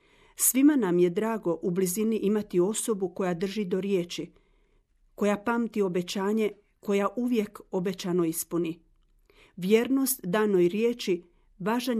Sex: female